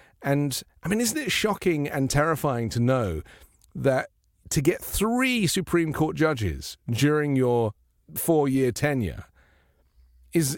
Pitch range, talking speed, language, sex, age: 100-150 Hz, 125 wpm, English, male, 40-59